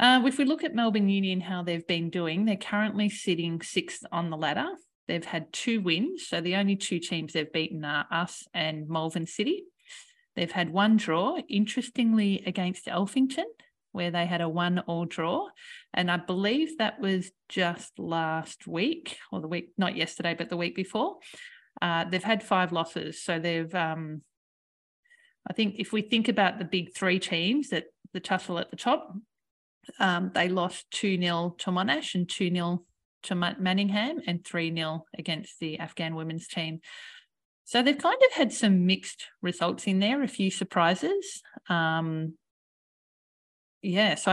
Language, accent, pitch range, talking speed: English, Australian, 165-215 Hz, 165 wpm